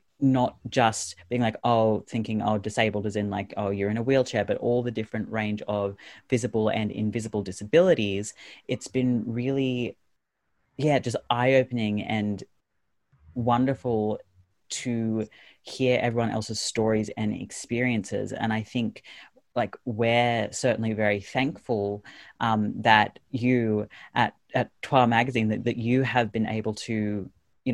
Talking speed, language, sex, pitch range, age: 140 wpm, English, female, 105-120 Hz, 30-49